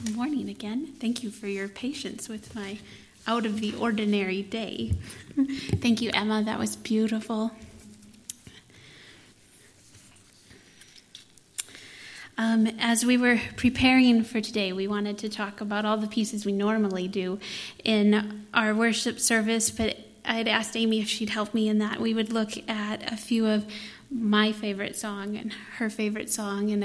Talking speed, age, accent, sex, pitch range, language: 150 wpm, 20-39, American, female, 210-230 Hz, English